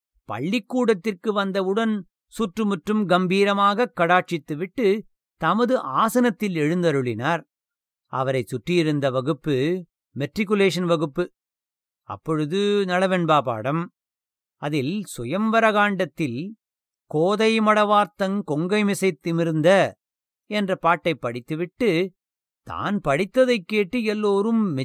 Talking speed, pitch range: 75 wpm, 145-205 Hz